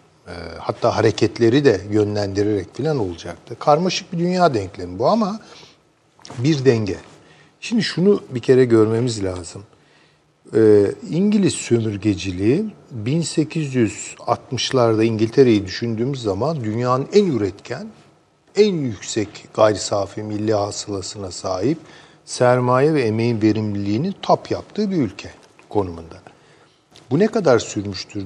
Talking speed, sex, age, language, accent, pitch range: 105 wpm, male, 50-69, Turkish, native, 105-160 Hz